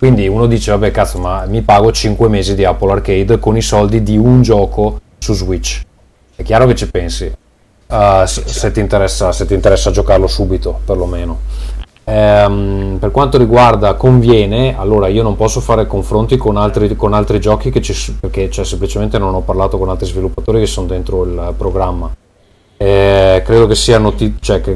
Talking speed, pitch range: 175 wpm, 95-110 Hz